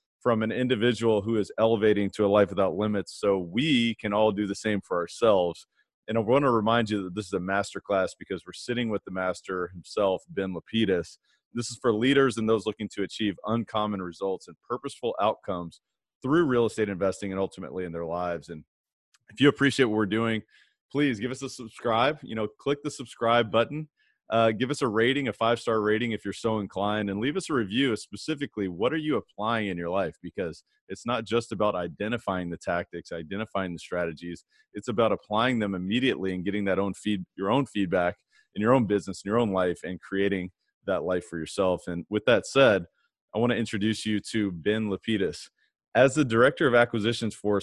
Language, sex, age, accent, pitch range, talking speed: English, male, 30-49, American, 95-115 Hz, 205 wpm